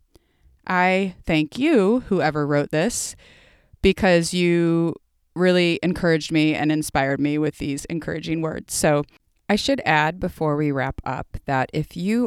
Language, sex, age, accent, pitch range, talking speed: English, female, 30-49, American, 140-170 Hz, 140 wpm